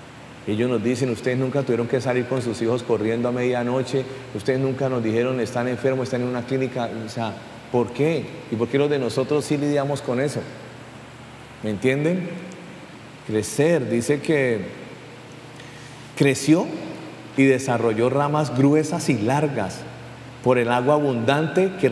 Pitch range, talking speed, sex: 120-145 Hz, 150 wpm, male